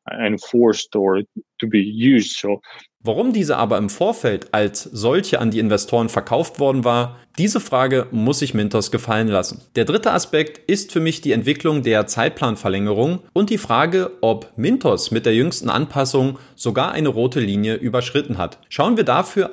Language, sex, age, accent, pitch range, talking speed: German, male, 30-49, German, 115-145 Hz, 150 wpm